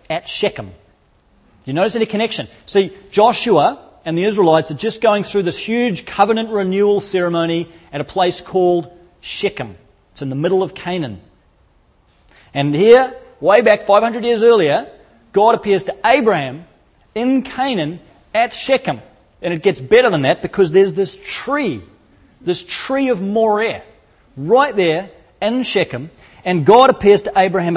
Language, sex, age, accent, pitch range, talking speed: English, male, 30-49, Australian, 145-210 Hz, 150 wpm